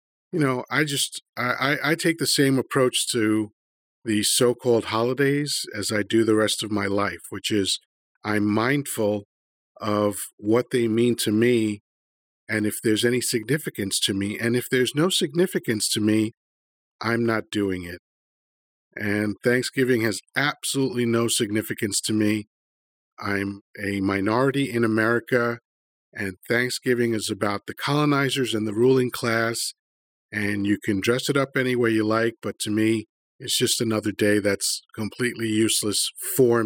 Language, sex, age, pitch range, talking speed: English, male, 40-59, 105-130 Hz, 155 wpm